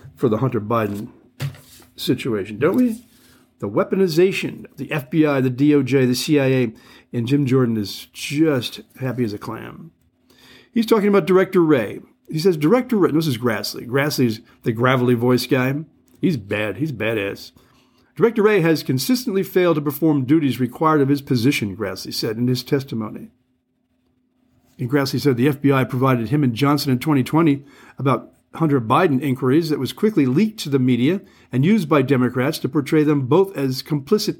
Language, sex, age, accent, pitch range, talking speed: English, male, 50-69, American, 125-160 Hz, 165 wpm